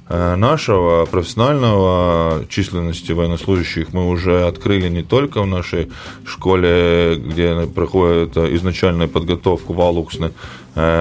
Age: 20-39